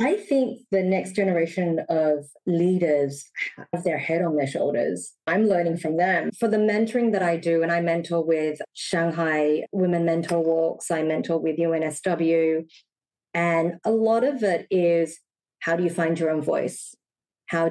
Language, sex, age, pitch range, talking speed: English, female, 20-39, 160-180 Hz, 165 wpm